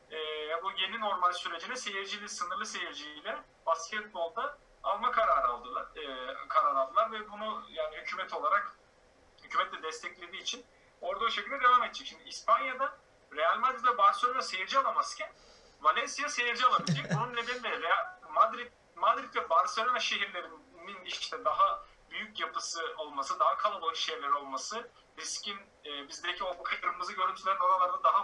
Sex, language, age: male, Turkish, 40-59